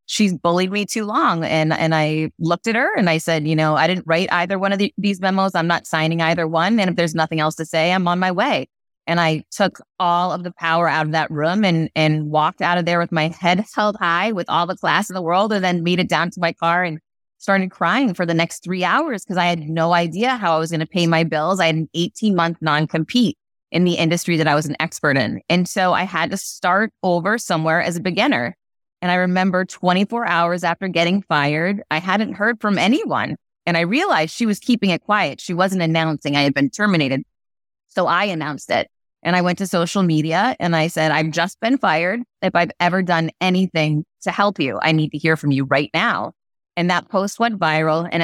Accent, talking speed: American, 240 wpm